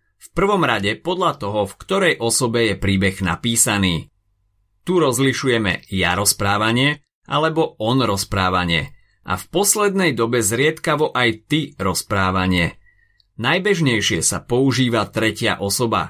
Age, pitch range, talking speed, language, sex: 30-49, 100-130 Hz, 115 wpm, Slovak, male